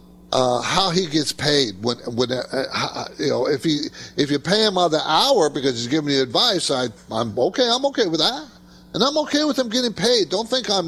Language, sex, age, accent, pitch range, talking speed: English, male, 50-69, American, 120-185 Hz, 230 wpm